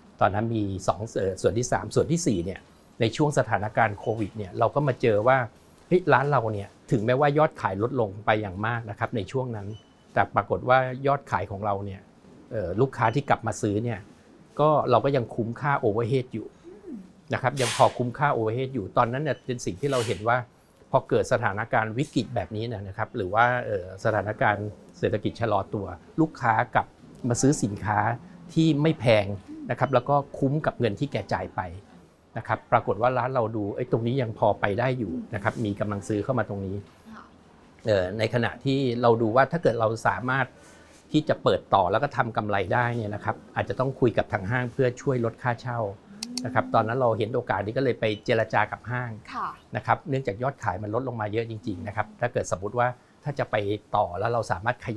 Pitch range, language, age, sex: 105-130 Hz, Thai, 60-79, male